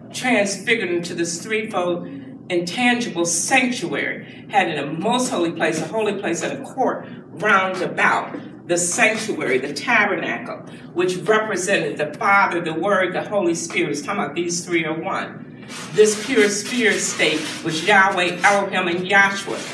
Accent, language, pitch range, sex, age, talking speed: American, English, 175-215 Hz, female, 50-69, 150 wpm